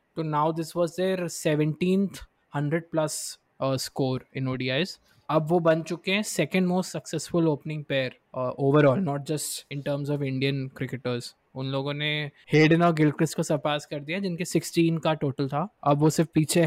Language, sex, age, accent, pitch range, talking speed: Hindi, male, 20-39, native, 135-160 Hz, 175 wpm